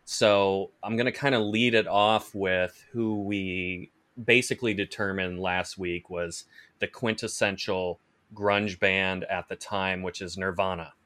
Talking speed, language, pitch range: 145 wpm, English, 95-115 Hz